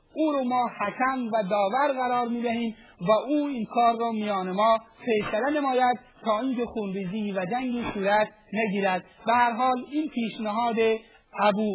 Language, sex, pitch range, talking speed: Persian, male, 200-240 Hz, 150 wpm